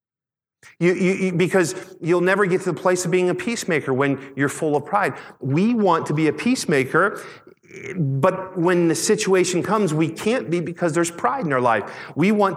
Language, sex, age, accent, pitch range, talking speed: English, male, 40-59, American, 135-175 Hz, 195 wpm